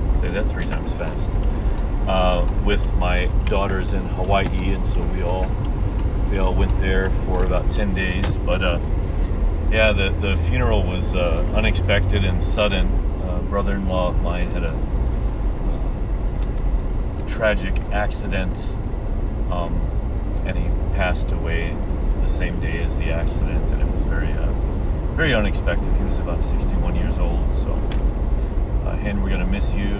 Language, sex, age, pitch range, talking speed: English, male, 40-59, 80-105 Hz, 145 wpm